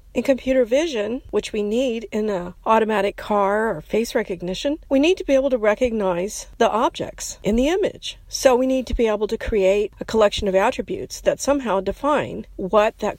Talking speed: 190 wpm